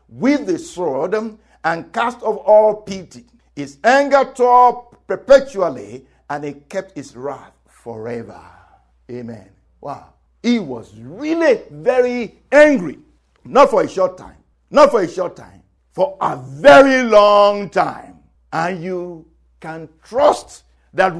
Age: 50-69